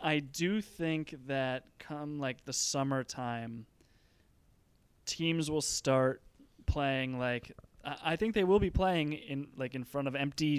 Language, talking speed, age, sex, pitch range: English, 145 wpm, 20-39, male, 125-150 Hz